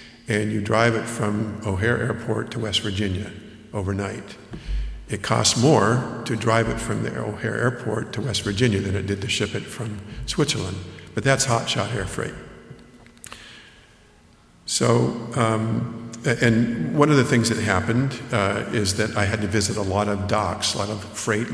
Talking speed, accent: 170 wpm, American